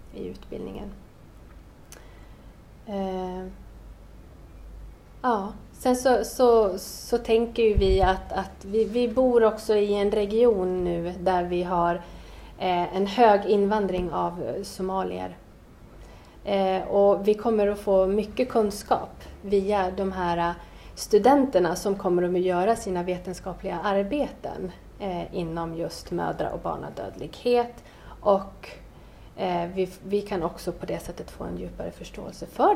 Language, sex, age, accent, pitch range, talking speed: English, female, 30-49, Swedish, 175-210 Hz, 110 wpm